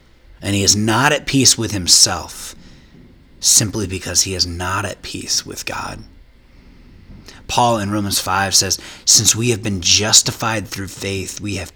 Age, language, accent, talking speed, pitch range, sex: 30-49, English, American, 160 wpm, 90-110 Hz, male